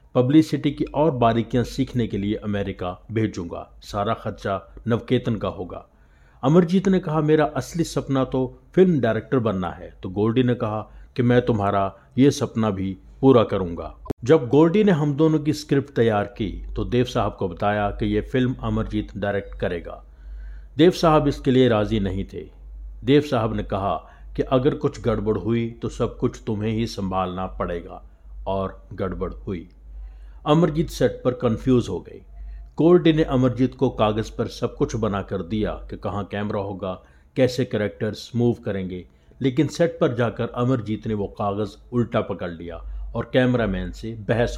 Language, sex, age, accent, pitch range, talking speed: Hindi, male, 50-69, native, 95-130 Hz, 165 wpm